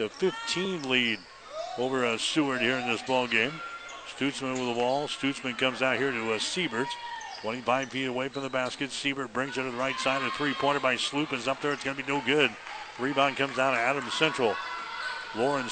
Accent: American